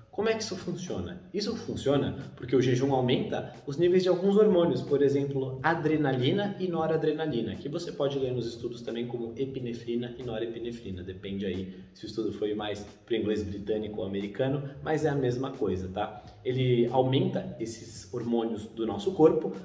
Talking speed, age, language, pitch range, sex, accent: 175 wpm, 20-39, Portuguese, 115-140 Hz, male, Brazilian